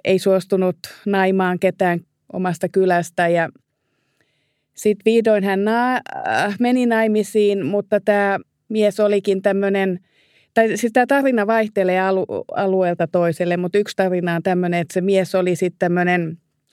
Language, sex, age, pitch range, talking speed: Finnish, female, 30-49, 175-200 Hz, 110 wpm